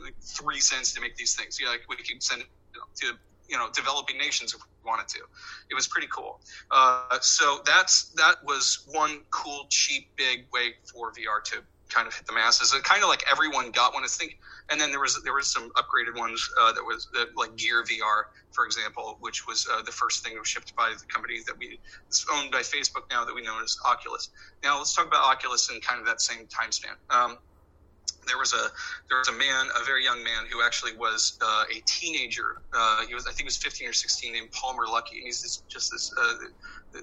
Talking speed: 235 wpm